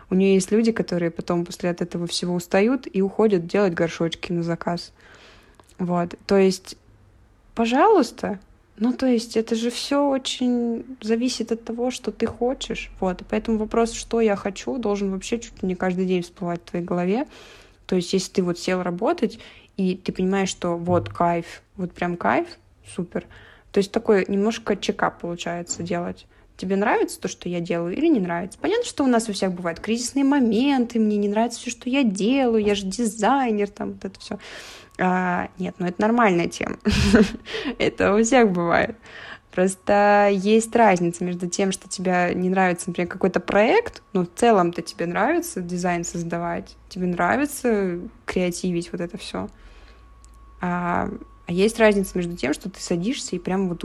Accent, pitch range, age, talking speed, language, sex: native, 175-225 Hz, 20-39, 170 wpm, Russian, female